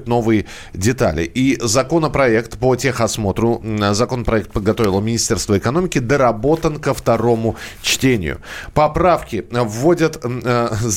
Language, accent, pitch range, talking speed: Russian, native, 100-135 Hz, 95 wpm